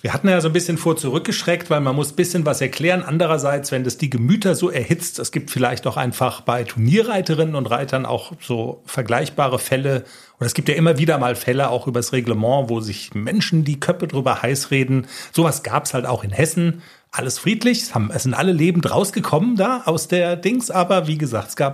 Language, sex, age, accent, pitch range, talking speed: German, male, 40-59, German, 125-170 Hz, 210 wpm